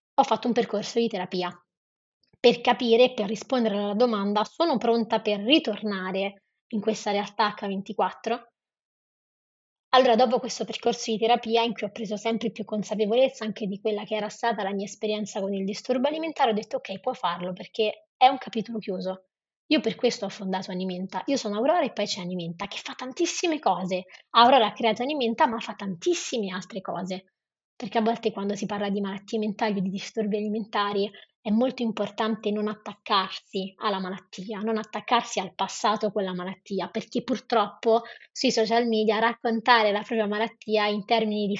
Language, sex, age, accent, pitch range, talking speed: Italian, female, 20-39, native, 200-235 Hz, 175 wpm